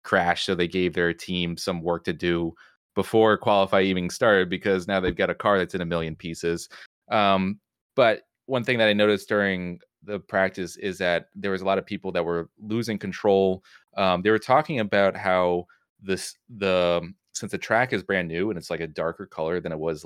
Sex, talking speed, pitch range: male, 210 wpm, 85-105 Hz